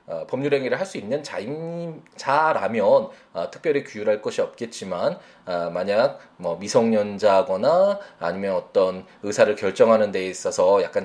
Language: Korean